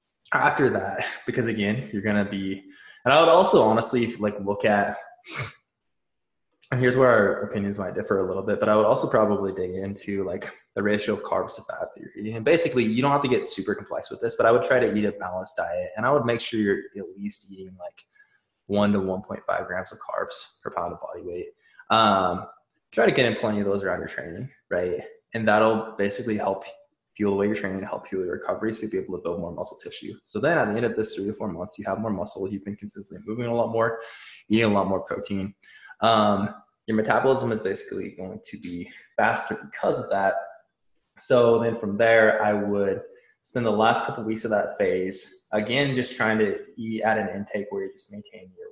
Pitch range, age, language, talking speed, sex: 100-120 Hz, 20-39, English, 230 wpm, male